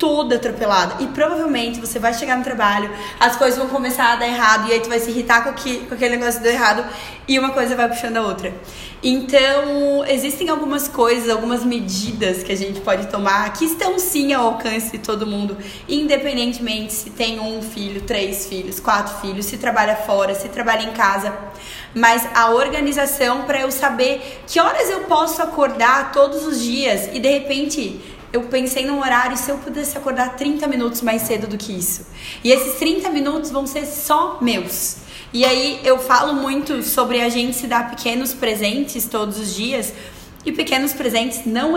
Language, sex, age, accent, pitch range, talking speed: Portuguese, female, 10-29, Brazilian, 225-280 Hz, 185 wpm